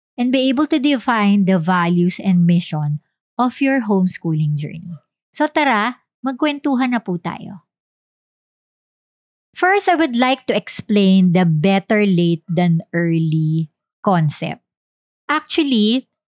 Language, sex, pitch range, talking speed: English, male, 175-235 Hz, 120 wpm